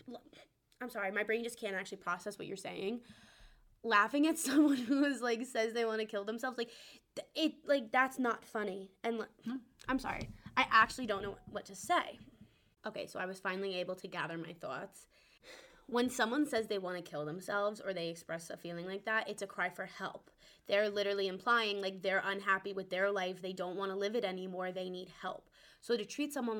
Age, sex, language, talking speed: 20-39, female, English, 210 wpm